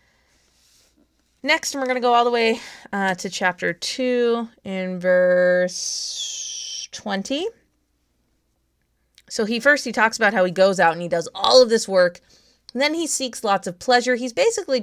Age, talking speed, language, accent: 20-39, 170 wpm, English, American